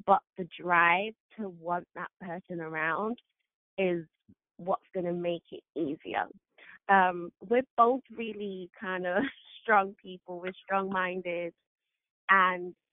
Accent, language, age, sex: British, English, 20-39, female